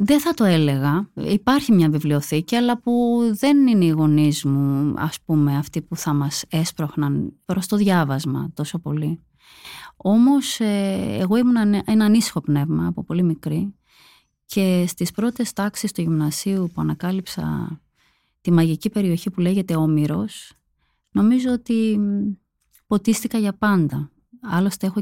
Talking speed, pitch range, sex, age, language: 135 wpm, 155-210 Hz, female, 20-39, Greek